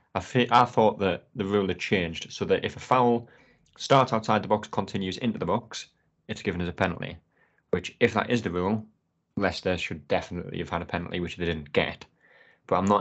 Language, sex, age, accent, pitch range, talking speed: English, male, 20-39, British, 90-110 Hz, 210 wpm